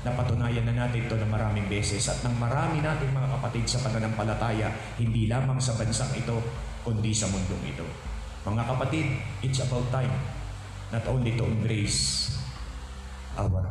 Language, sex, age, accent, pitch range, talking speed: Filipino, male, 50-69, native, 100-125 Hz, 155 wpm